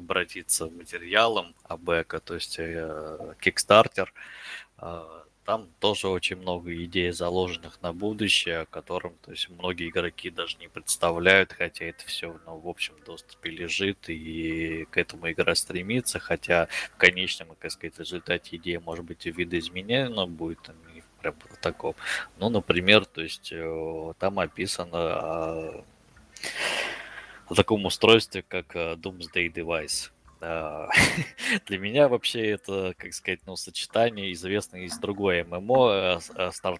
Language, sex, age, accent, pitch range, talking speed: Russian, male, 20-39, native, 85-95 Hz, 125 wpm